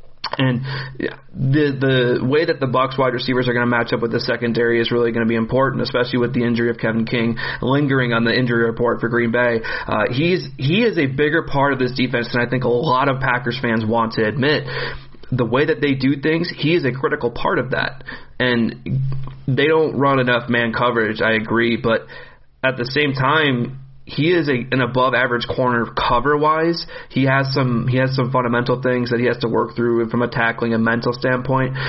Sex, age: male, 30-49